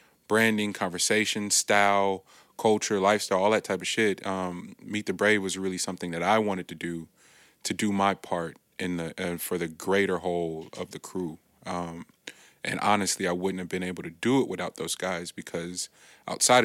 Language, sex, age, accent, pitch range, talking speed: English, male, 20-39, American, 90-105 Hz, 185 wpm